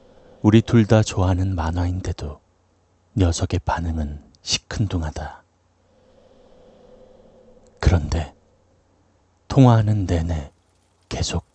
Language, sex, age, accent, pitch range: Korean, male, 40-59, native, 85-95 Hz